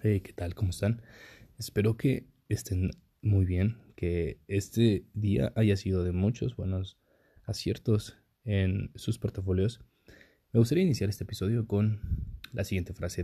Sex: male